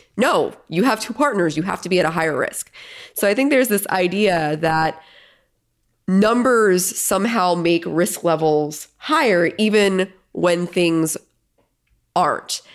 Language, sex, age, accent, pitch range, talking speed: English, female, 20-39, American, 160-195 Hz, 140 wpm